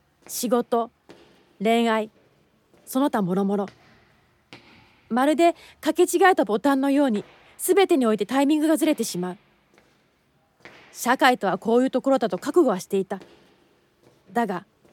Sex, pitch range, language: female, 215-285 Hz, Japanese